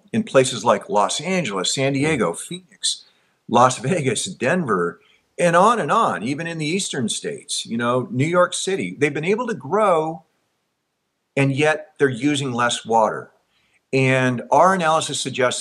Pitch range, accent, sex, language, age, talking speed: 115-175 Hz, American, male, English, 50-69, 155 wpm